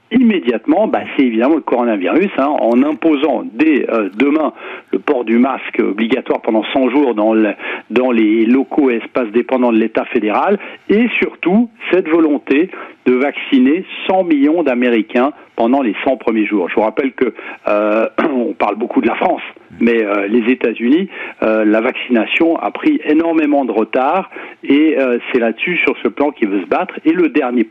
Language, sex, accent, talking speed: French, male, French, 180 wpm